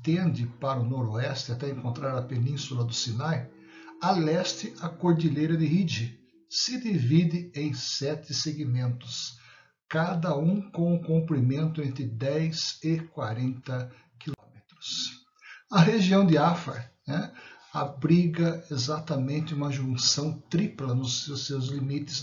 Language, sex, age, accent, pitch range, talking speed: Portuguese, male, 60-79, Brazilian, 130-165 Hz, 120 wpm